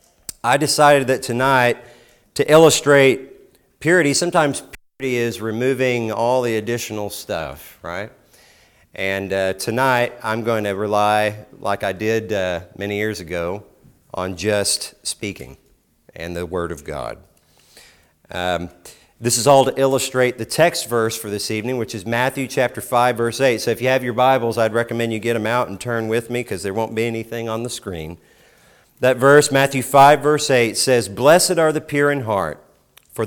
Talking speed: 170 wpm